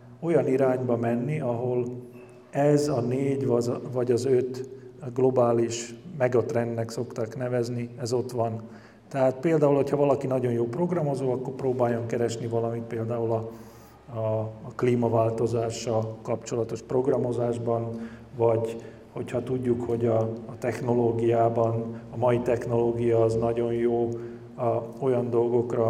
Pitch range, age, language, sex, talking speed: 115-125 Hz, 40-59, Hungarian, male, 115 wpm